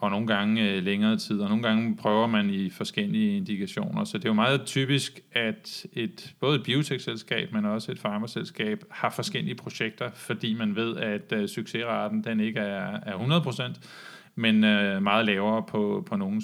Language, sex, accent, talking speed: Danish, male, native, 170 wpm